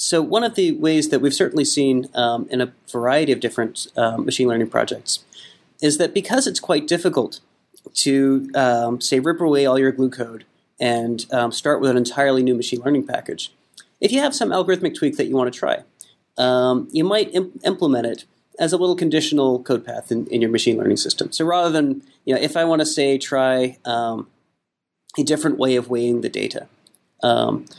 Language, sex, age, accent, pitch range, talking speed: English, male, 30-49, American, 125-160 Hz, 200 wpm